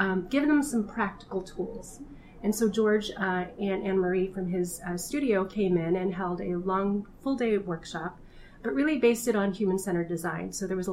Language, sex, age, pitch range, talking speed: English, female, 30-49, 180-210 Hz, 190 wpm